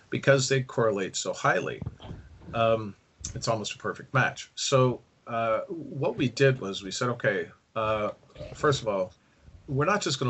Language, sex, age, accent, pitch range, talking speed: English, male, 40-59, American, 100-130 Hz, 165 wpm